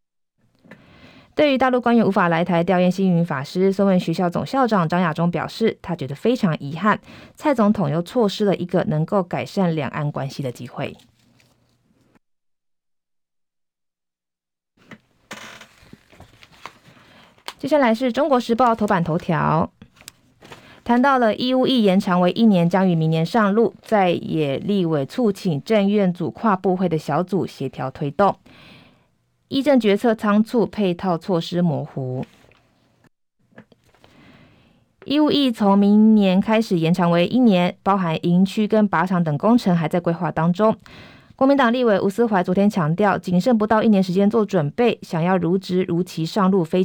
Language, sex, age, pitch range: Chinese, female, 20-39, 165-215 Hz